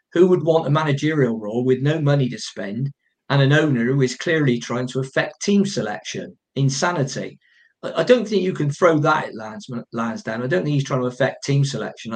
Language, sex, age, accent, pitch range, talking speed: English, male, 50-69, British, 125-180 Hz, 200 wpm